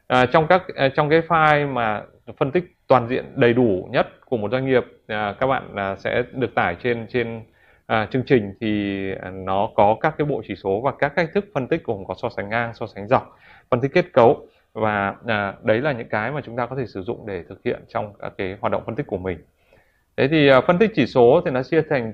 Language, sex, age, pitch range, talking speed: Vietnamese, male, 20-39, 110-150 Hz, 250 wpm